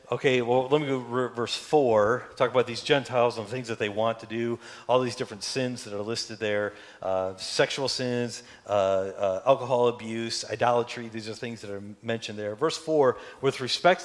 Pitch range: 110-135 Hz